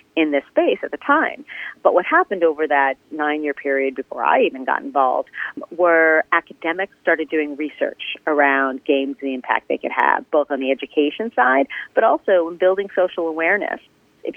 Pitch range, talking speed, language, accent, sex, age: 140-165 Hz, 180 wpm, English, American, female, 40-59